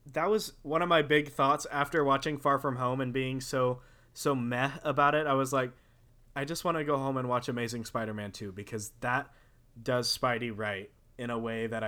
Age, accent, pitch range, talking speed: 20-39, American, 115-140 Hz, 210 wpm